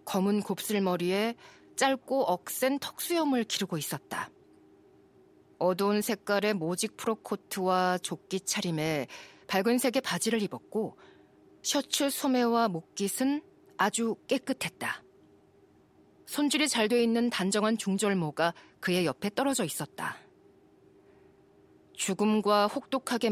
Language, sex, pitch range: Korean, female, 185-235 Hz